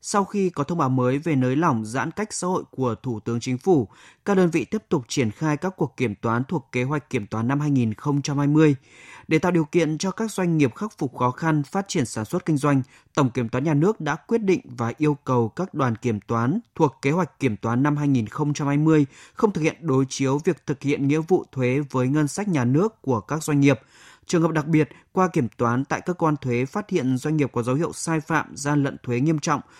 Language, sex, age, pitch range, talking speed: Vietnamese, male, 20-39, 125-165 Hz, 245 wpm